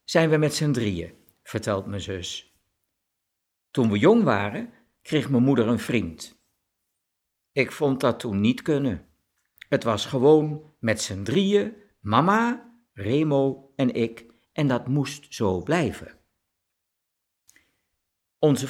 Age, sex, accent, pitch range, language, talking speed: 50-69, male, Dutch, 95-150 Hz, Dutch, 125 wpm